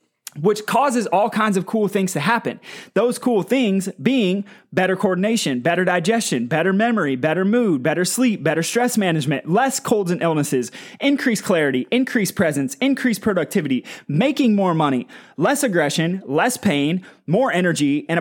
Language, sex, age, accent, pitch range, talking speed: English, male, 30-49, American, 165-225 Hz, 150 wpm